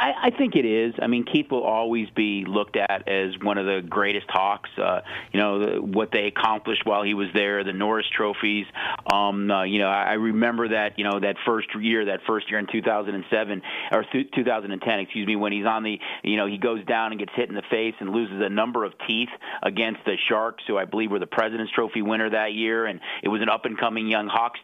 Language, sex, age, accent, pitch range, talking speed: English, male, 30-49, American, 105-125 Hz, 225 wpm